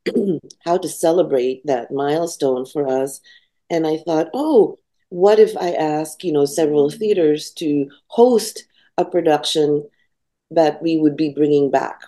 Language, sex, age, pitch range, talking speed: English, female, 50-69, 140-175 Hz, 145 wpm